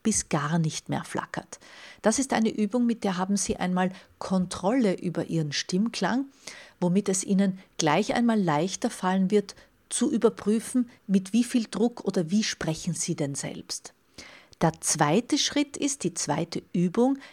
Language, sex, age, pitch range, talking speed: German, female, 40-59, 170-230 Hz, 155 wpm